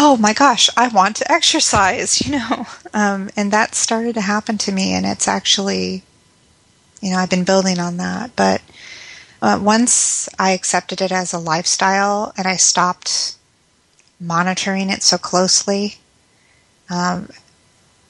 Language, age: English, 30-49